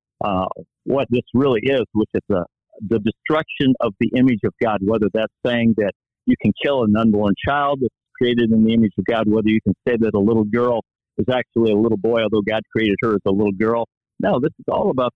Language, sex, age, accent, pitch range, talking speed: English, male, 50-69, American, 110-130 Hz, 225 wpm